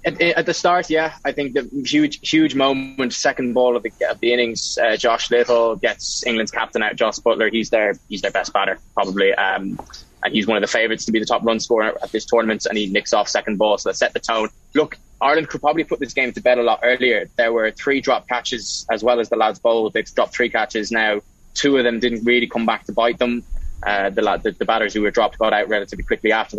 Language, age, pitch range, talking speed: English, 20-39, 115-125 Hz, 255 wpm